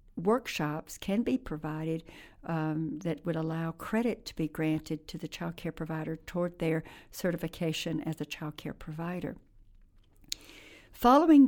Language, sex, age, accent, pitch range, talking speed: English, female, 60-79, American, 165-210 Hz, 135 wpm